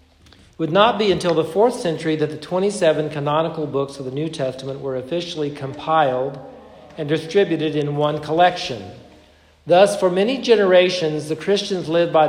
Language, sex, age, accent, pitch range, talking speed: English, male, 50-69, American, 135-175 Hz, 155 wpm